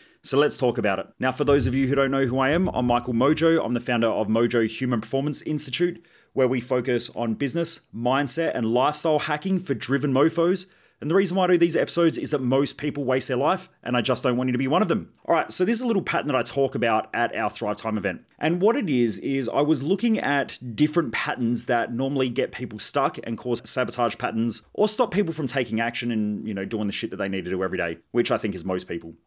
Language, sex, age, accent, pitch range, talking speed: English, male, 30-49, Australian, 115-150 Hz, 260 wpm